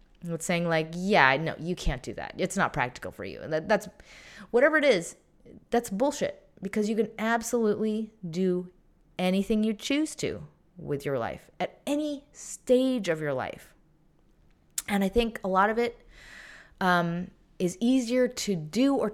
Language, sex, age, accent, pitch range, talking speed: English, female, 20-39, American, 160-205 Hz, 165 wpm